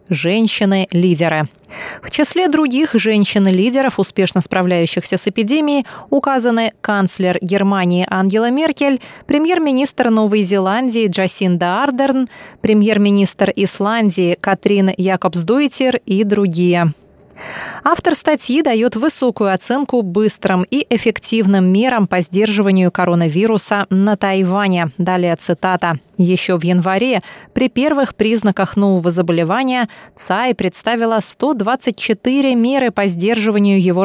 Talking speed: 100 wpm